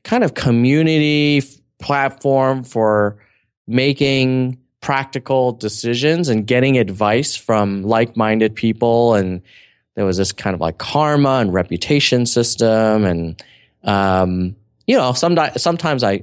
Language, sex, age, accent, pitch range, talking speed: English, male, 20-39, American, 100-130 Hz, 120 wpm